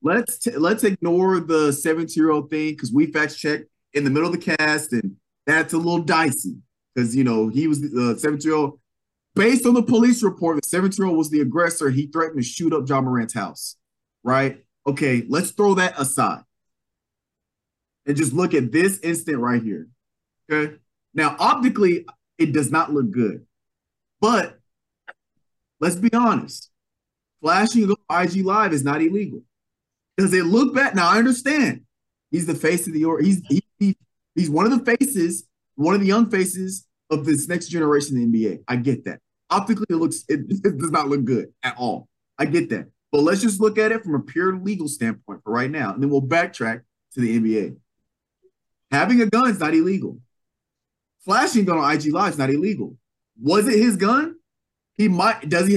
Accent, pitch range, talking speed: American, 145-200 Hz, 180 wpm